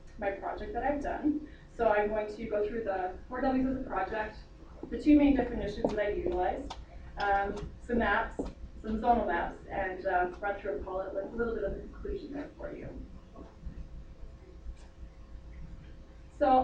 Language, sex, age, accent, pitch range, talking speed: English, female, 20-39, American, 195-250 Hz, 175 wpm